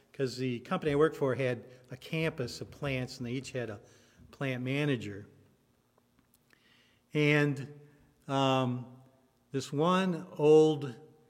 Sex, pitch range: male, 120-150 Hz